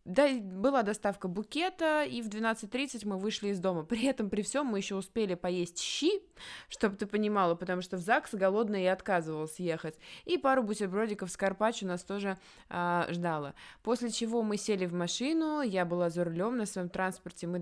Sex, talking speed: female, 185 wpm